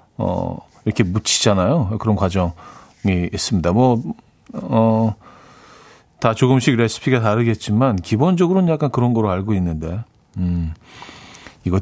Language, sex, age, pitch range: Korean, male, 40-59, 100-135 Hz